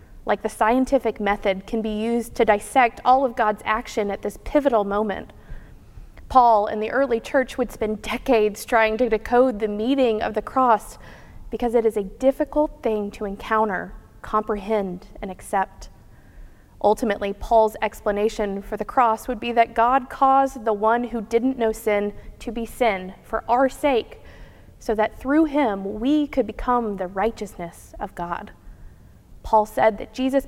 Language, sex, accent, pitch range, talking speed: English, female, American, 205-245 Hz, 160 wpm